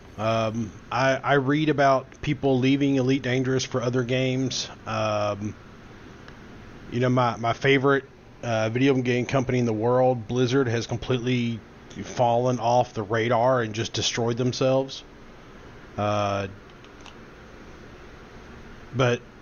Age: 30-49